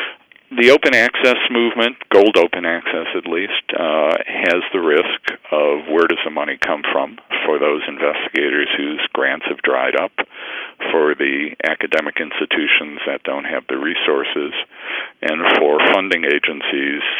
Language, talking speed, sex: English, 145 wpm, male